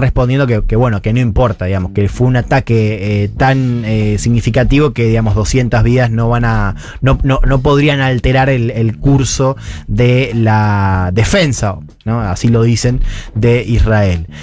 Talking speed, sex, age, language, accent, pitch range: 165 wpm, male, 20-39, Spanish, Argentinian, 110-135 Hz